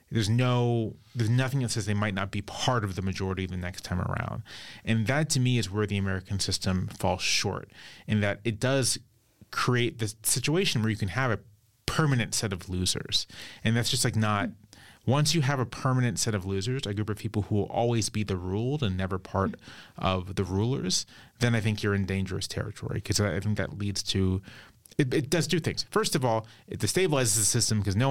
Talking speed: 215 wpm